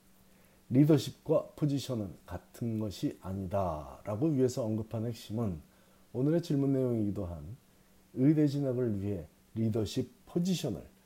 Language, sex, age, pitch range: Korean, male, 40-59, 105-145 Hz